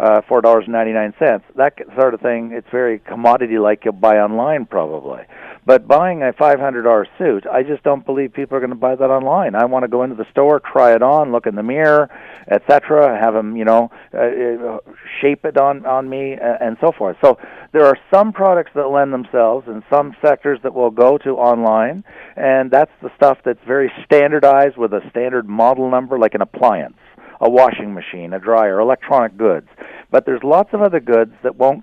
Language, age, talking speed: English, 50-69, 200 wpm